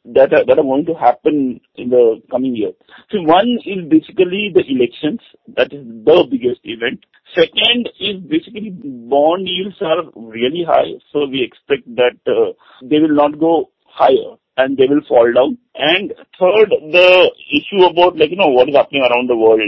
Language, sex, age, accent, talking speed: English, male, 50-69, Indian, 175 wpm